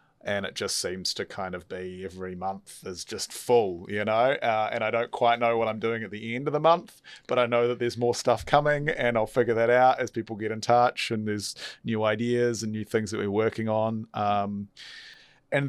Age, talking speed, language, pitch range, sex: 30-49, 235 wpm, English, 95-115 Hz, male